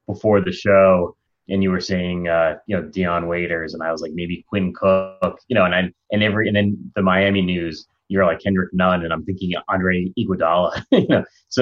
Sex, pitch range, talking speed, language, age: male, 85-100 Hz, 205 wpm, English, 20-39